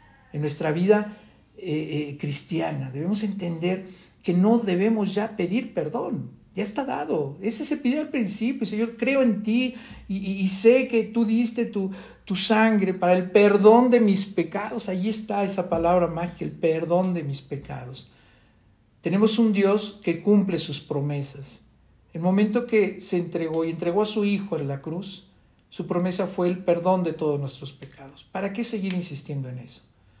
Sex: male